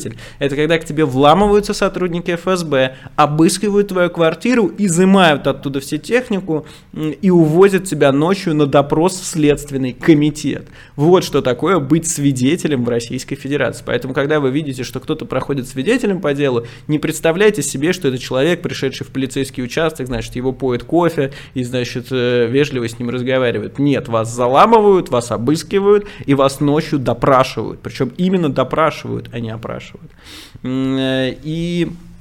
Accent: native